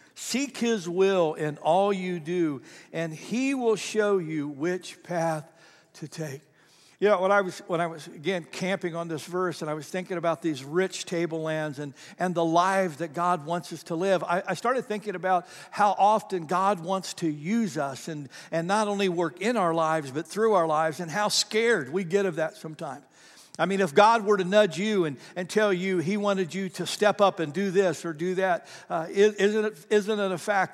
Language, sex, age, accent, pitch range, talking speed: English, male, 60-79, American, 165-210 Hz, 215 wpm